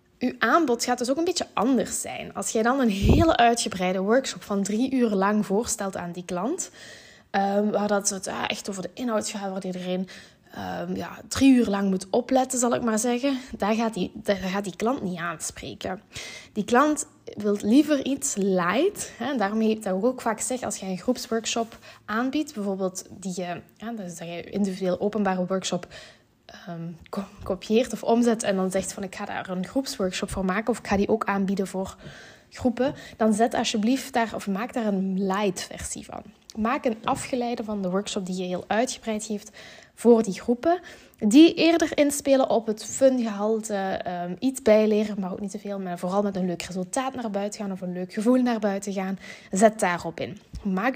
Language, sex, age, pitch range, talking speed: Dutch, female, 20-39, 195-240 Hz, 195 wpm